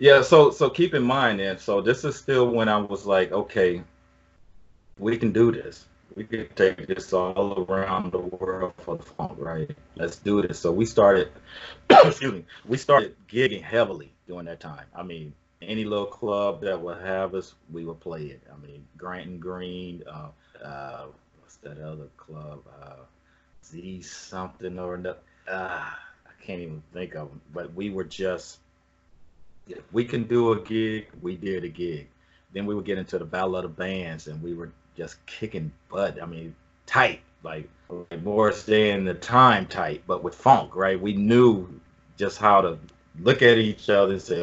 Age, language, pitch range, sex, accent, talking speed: 30-49, English, 85-110 Hz, male, American, 185 wpm